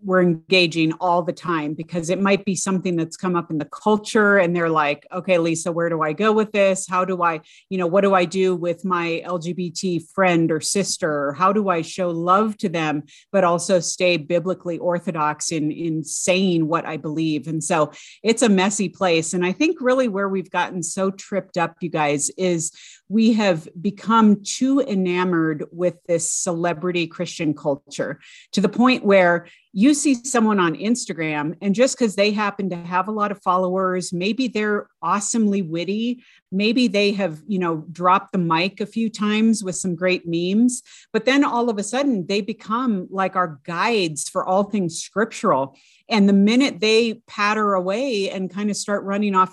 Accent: American